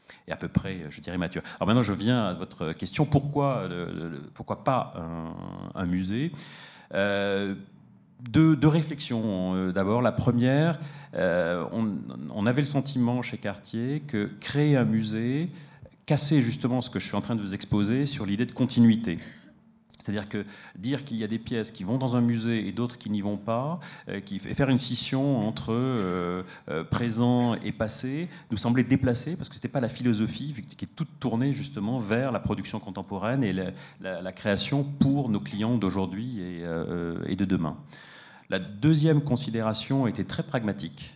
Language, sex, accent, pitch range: French, male, French, 95-130 Hz